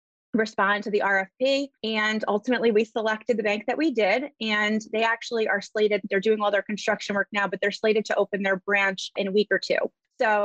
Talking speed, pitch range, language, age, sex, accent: 220 wpm, 205-245 Hz, English, 30-49, female, American